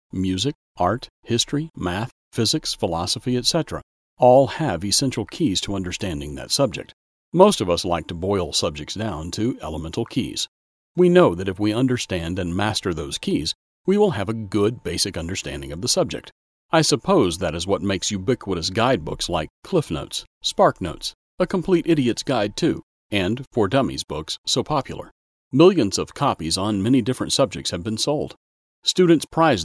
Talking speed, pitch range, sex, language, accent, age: 165 wpm, 85-130 Hz, male, English, American, 40-59